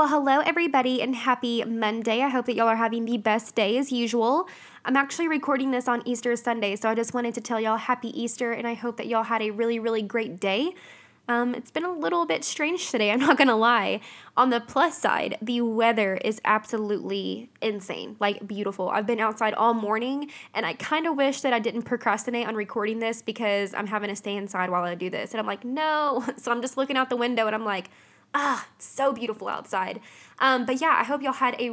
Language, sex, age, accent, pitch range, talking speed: English, female, 10-29, American, 215-245 Hz, 230 wpm